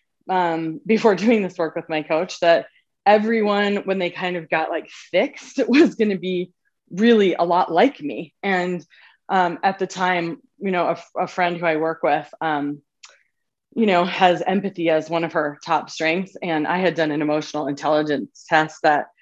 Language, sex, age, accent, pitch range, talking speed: English, female, 20-39, American, 160-205 Hz, 185 wpm